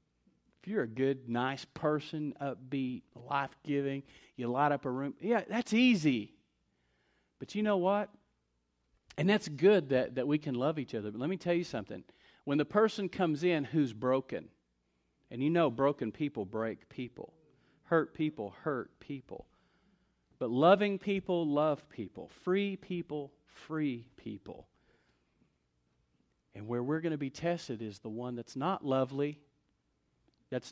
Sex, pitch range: male, 125-185 Hz